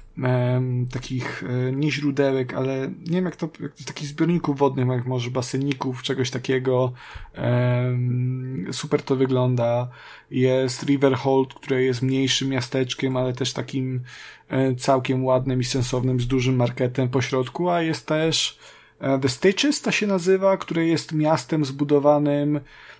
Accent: native